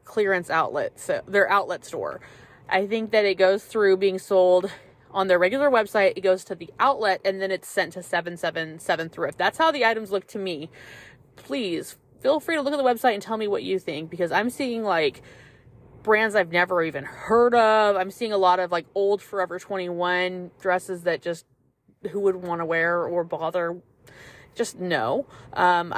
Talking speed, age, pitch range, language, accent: 195 wpm, 20-39, 175-230 Hz, English, American